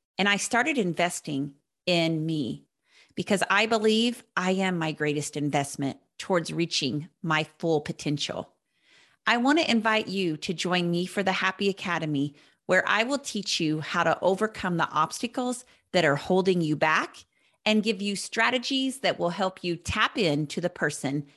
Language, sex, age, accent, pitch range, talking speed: English, female, 40-59, American, 160-215 Hz, 165 wpm